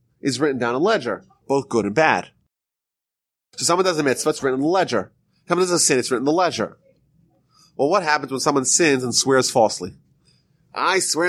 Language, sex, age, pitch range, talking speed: English, male, 30-49, 135-195 Hz, 205 wpm